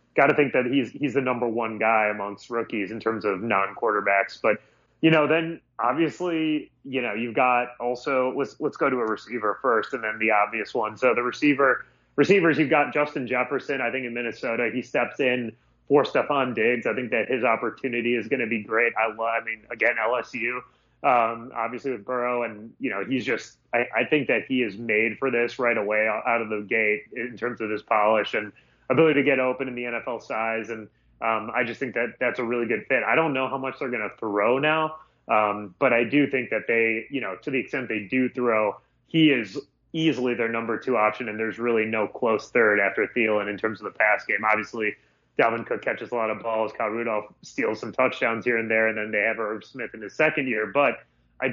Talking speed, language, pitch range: 230 wpm, English, 110-130 Hz